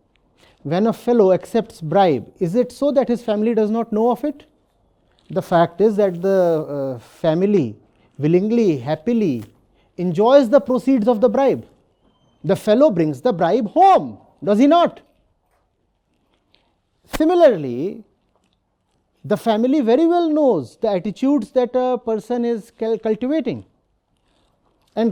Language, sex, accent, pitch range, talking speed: English, male, Indian, 170-255 Hz, 130 wpm